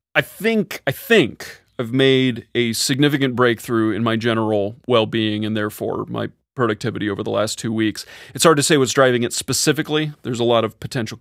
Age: 30-49